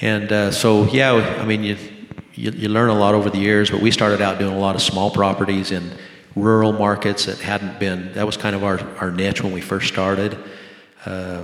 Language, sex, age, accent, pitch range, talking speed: English, male, 40-59, American, 95-100 Hz, 225 wpm